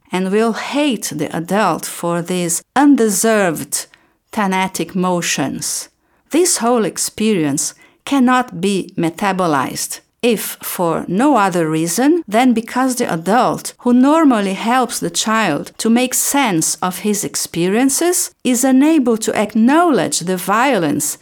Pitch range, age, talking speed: 175-250 Hz, 50-69, 120 wpm